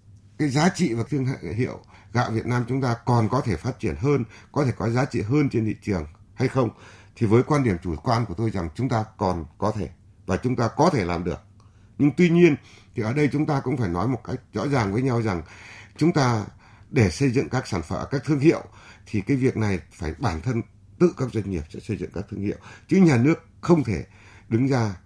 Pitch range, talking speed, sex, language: 100-135 Hz, 245 wpm, male, Vietnamese